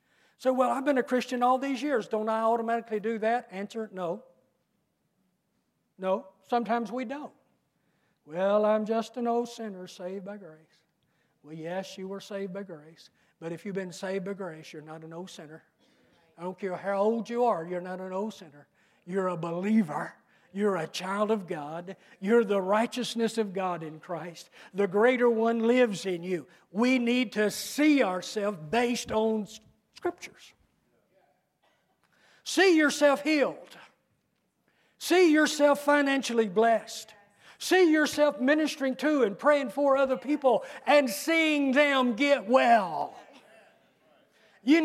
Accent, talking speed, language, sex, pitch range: American, 150 wpm, English, male, 190-265 Hz